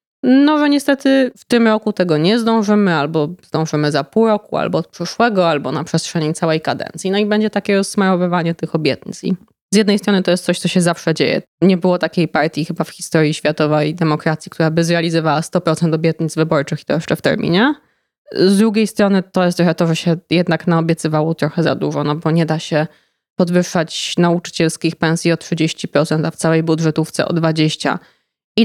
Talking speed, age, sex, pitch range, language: 190 wpm, 20-39, female, 160-195 Hz, Polish